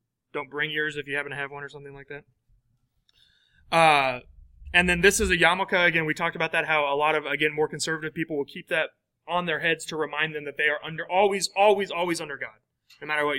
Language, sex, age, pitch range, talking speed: English, male, 30-49, 140-180 Hz, 240 wpm